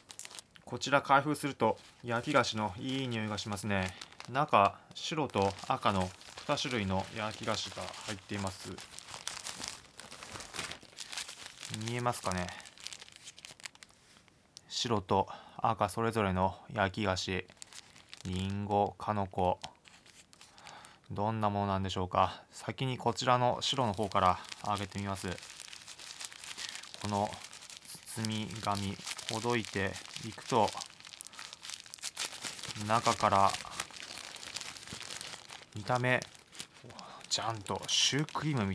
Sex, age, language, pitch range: male, 20-39, Japanese, 95-115 Hz